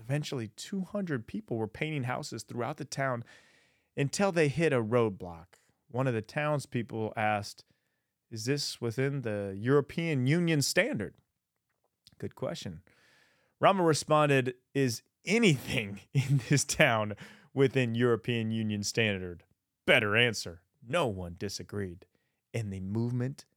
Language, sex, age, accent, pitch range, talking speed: English, male, 30-49, American, 110-150 Hz, 120 wpm